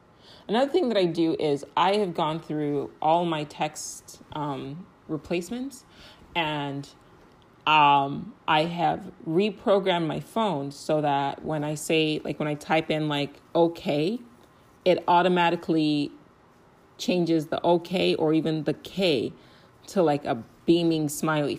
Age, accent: 30-49, American